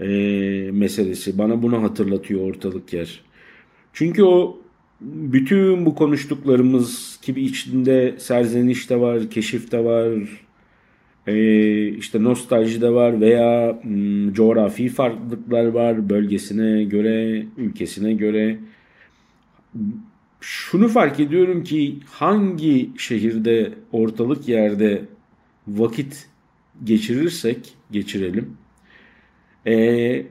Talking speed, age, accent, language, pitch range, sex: 85 wpm, 50-69, native, Turkish, 105-130 Hz, male